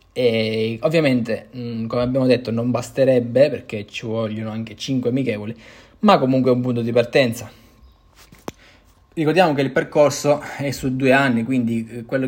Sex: male